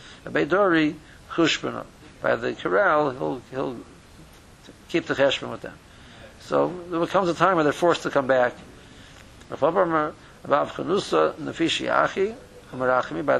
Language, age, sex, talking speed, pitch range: English, 60-79, male, 105 wpm, 130-170 Hz